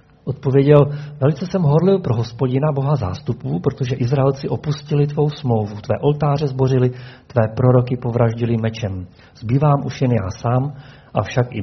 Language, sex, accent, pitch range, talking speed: Czech, male, native, 115-145 Hz, 145 wpm